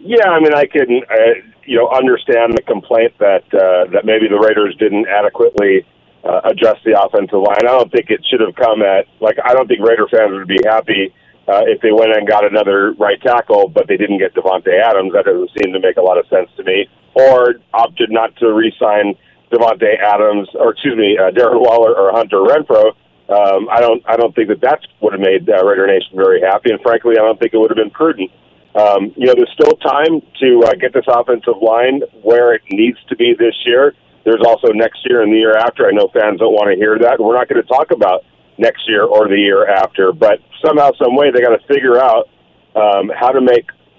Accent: American